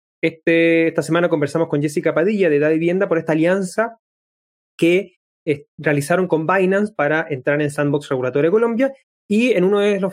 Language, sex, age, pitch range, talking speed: Spanish, male, 20-39, 155-190 Hz, 170 wpm